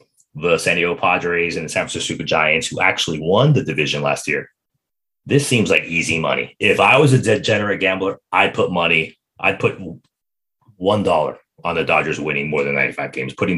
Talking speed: 190 wpm